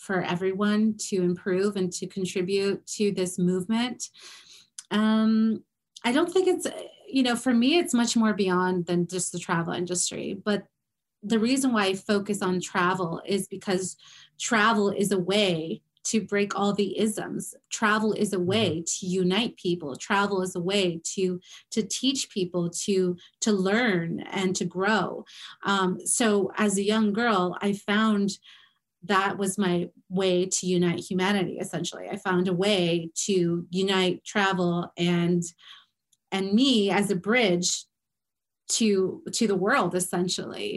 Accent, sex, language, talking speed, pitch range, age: American, female, English, 150 wpm, 185-215 Hz, 30-49